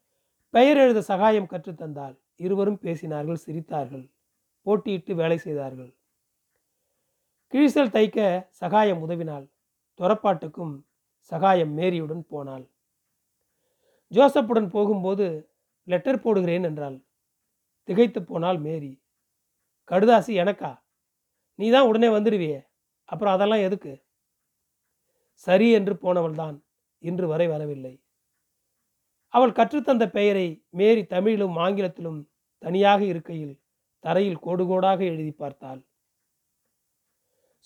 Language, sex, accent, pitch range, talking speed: Tamil, male, native, 160-215 Hz, 85 wpm